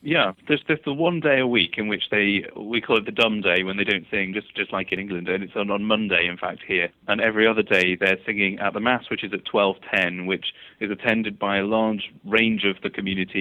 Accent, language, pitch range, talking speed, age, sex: British, English, 95-110 Hz, 255 wpm, 30-49, male